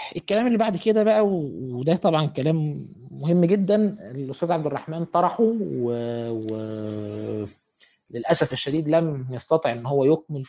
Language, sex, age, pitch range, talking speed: Arabic, male, 20-39, 145-200 Hz, 125 wpm